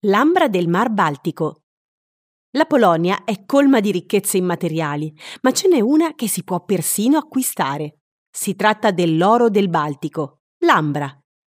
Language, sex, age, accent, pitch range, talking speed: Italian, female, 30-49, native, 175-235 Hz, 135 wpm